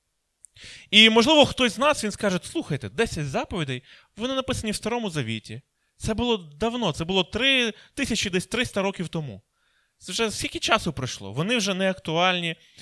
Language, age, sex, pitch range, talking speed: Ukrainian, 20-39, male, 155-225 Hz, 165 wpm